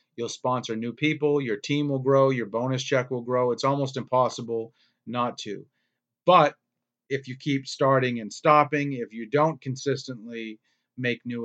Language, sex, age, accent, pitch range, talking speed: English, male, 40-59, American, 120-145 Hz, 160 wpm